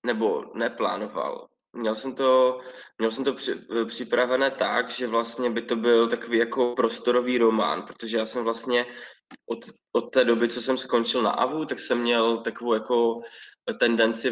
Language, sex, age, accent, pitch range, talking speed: Czech, male, 20-39, native, 115-130 Hz, 165 wpm